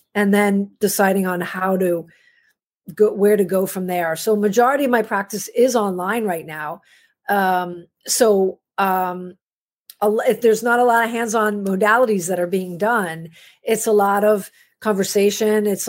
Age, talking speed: 40-59, 160 wpm